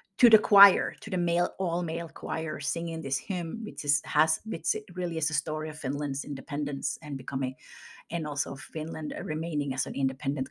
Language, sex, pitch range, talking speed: English, female, 155-225 Hz, 185 wpm